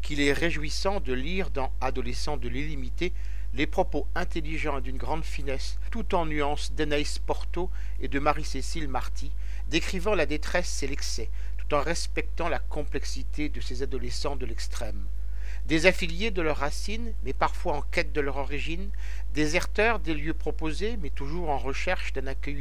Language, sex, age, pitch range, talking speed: French, male, 50-69, 140-175 Hz, 165 wpm